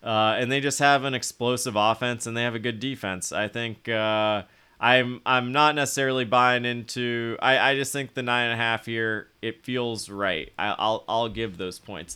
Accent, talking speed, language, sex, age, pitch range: American, 205 wpm, English, male, 30-49, 120-155 Hz